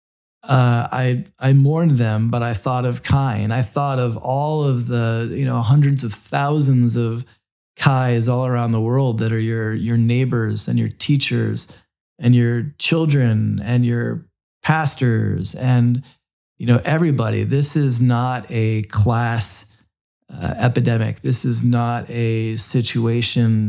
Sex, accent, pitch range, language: male, American, 110-130 Hz, English